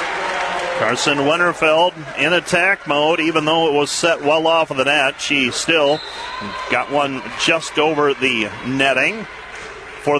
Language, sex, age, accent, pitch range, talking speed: English, male, 40-59, American, 145-165 Hz, 140 wpm